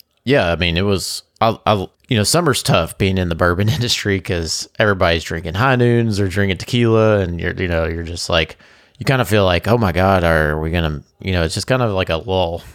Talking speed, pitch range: 235 wpm, 85-100 Hz